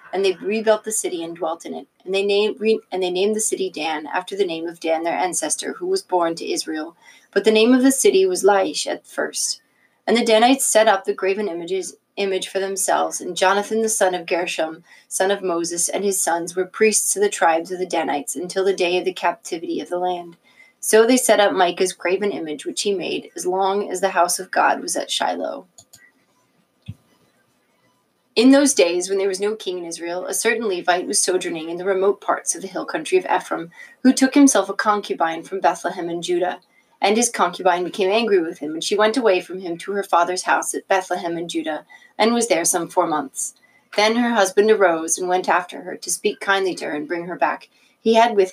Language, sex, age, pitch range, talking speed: English, female, 30-49, 175-220 Hz, 220 wpm